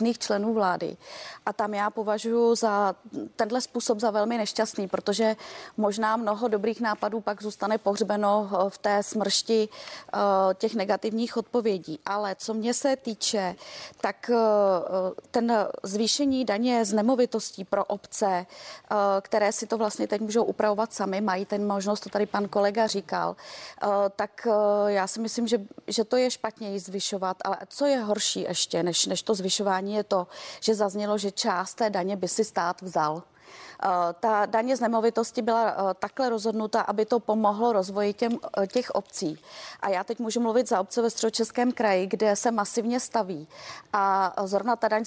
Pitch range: 200-230 Hz